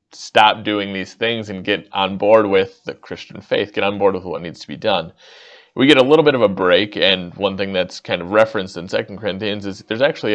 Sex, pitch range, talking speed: male, 95-115 Hz, 245 wpm